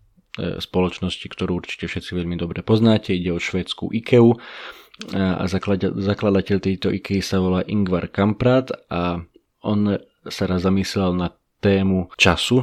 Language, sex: Slovak, male